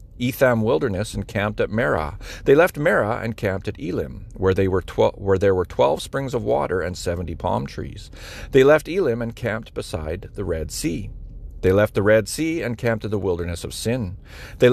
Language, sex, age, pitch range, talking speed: English, male, 50-69, 100-120 Hz, 190 wpm